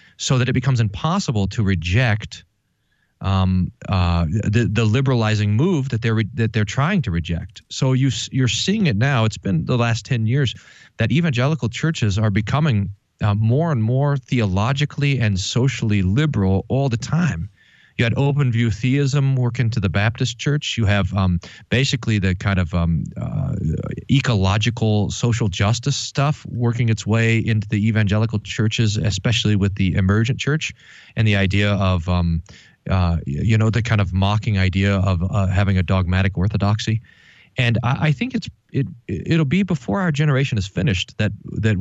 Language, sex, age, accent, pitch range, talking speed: English, male, 40-59, American, 100-130 Hz, 170 wpm